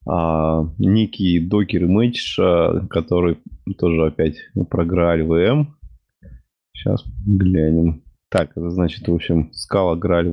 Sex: male